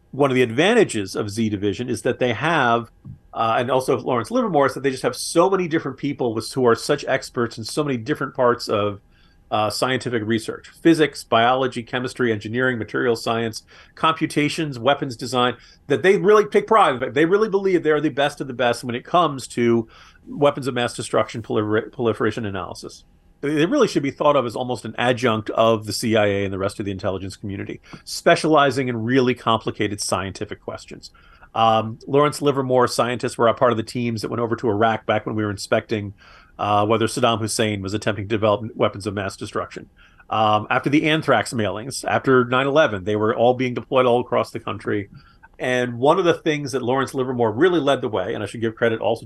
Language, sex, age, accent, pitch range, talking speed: English, male, 40-59, American, 110-135 Hz, 200 wpm